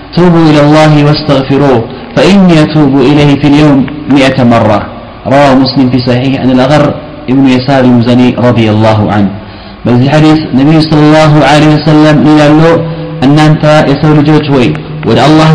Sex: male